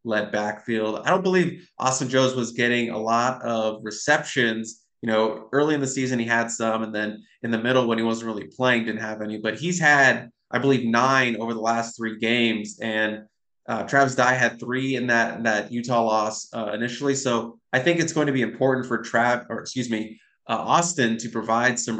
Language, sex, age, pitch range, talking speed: English, male, 20-39, 110-125 Hz, 215 wpm